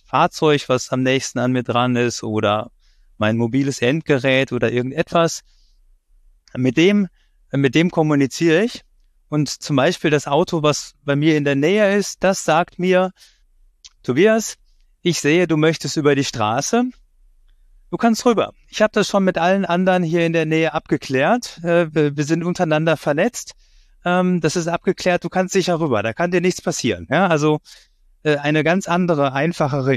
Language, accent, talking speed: German, German, 160 wpm